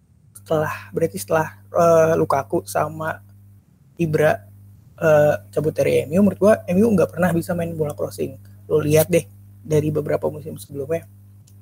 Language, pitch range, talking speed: Indonesian, 105-170 Hz, 140 wpm